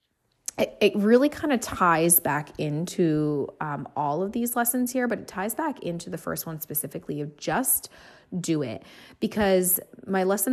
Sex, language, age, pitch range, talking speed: female, English, 20-39, 165-210 Hz, 165 wpm